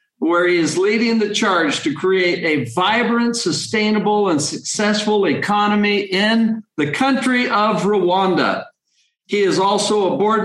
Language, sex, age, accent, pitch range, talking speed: English, male, 50-69, American, 180-220 Hz, 140 wpm